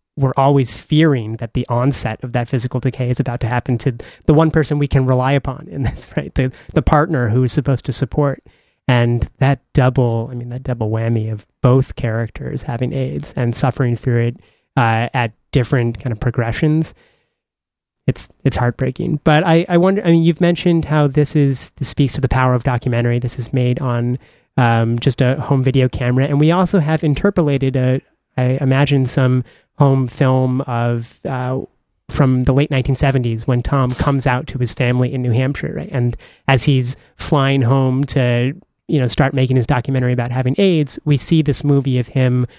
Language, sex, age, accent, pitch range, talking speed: English, male, 30-49, American, 125-145 Hz, 190 wpm